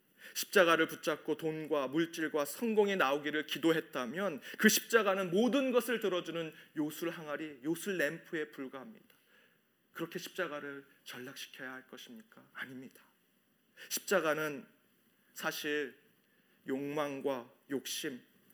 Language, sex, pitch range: Korean, male, 145-195 Hz